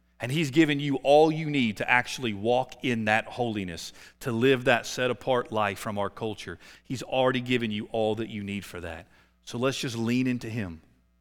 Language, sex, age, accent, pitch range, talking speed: English, male, 40-59, American, 105-160 Hz, 200 wpm